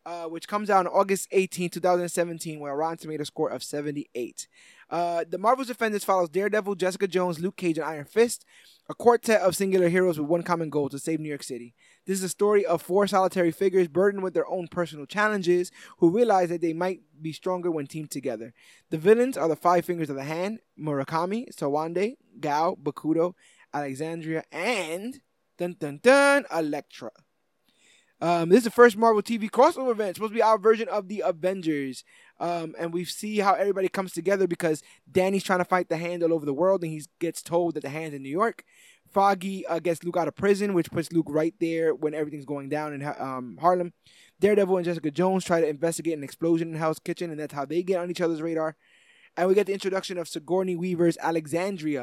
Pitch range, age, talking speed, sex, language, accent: 160-195 Hz, 20-39, 205 wpm, male, English, American